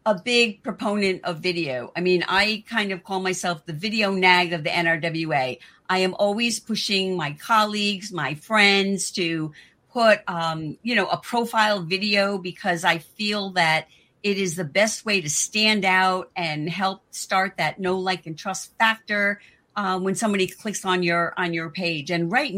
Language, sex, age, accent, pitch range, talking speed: English, female, 50-69, American, 175-215 Hz, 175 wpm